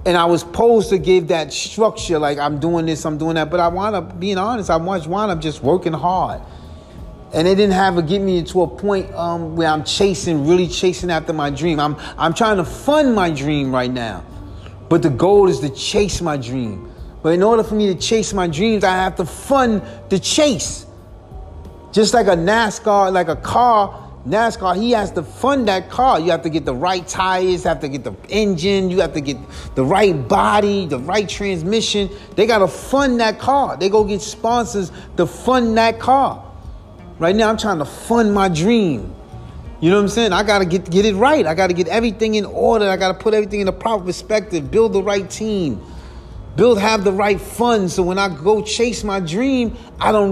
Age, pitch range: 30-49, 155-215 Hz